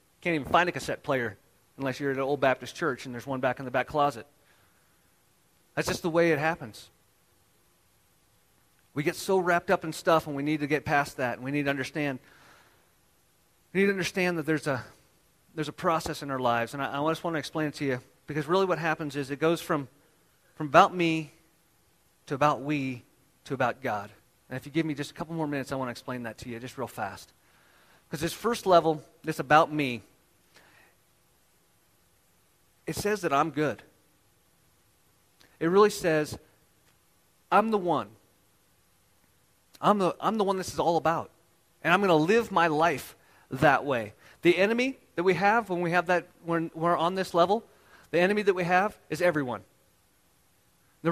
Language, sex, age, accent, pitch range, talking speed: English, male, 30-49, American, 140-175 Hz, 190 wpm